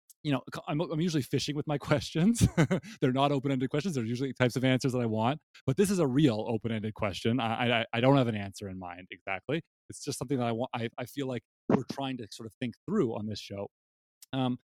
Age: 30-49